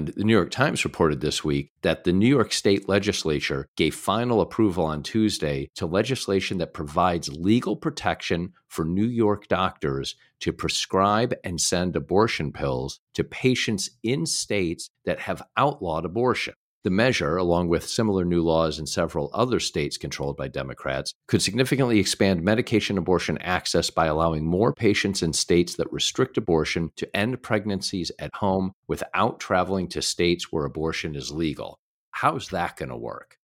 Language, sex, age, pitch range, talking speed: English, male, 50-69, 80-100 Hz, 165 wpm